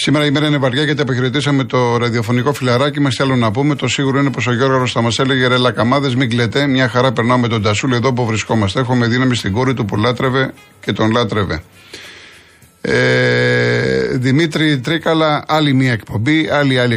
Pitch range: 120-145 Hz